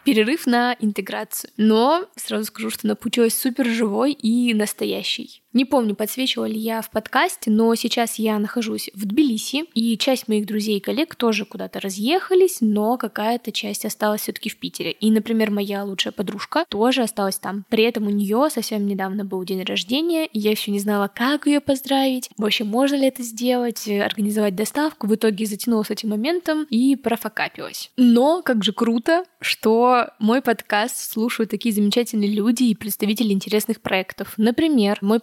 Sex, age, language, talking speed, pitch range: female, 10-29, Russian, 165 wpm, 205-250 Hz